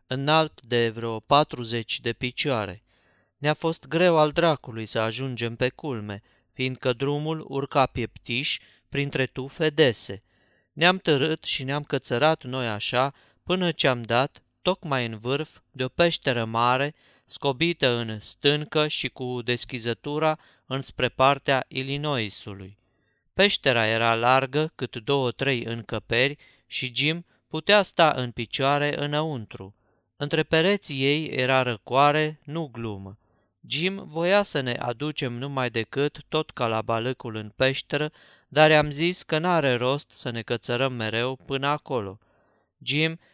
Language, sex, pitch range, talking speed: Romanian, male, 115-150 Hz, 130 wpm